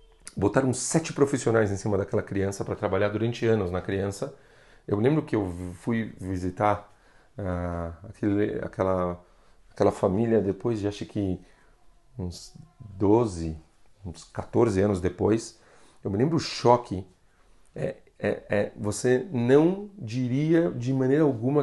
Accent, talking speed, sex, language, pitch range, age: Brazilian, 135 wpm, male, Portuguese, 105-150 Hz, 40-59